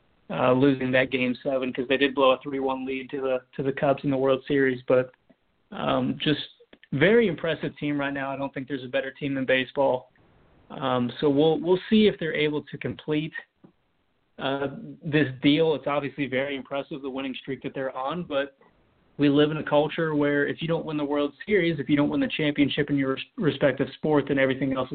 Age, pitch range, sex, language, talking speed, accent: 30-49, 135-150 Hz, male, English, 210 wpm, American